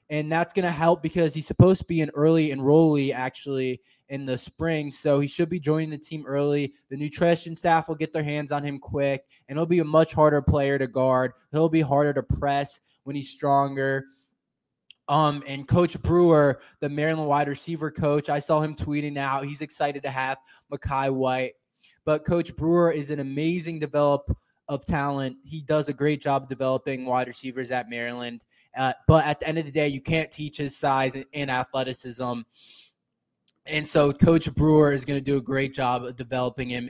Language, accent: English, American